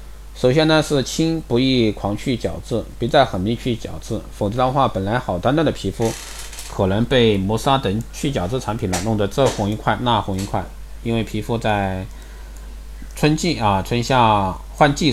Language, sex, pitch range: Chinese, male, 95-120 Hz